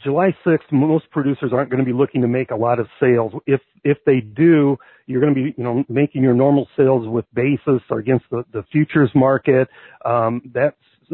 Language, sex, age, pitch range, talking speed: English, male, 40-59, 125-145 Hz, 210 wpm